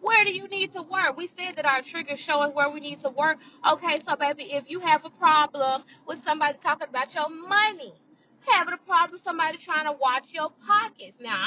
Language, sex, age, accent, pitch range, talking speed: English, female, 20-39, American, 260-345 Hz, 225 wpm